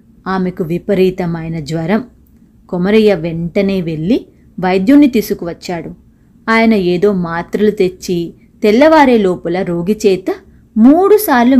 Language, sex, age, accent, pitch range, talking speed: Telugu, female, 30-49, native, 185-245 Hz, 90 wpm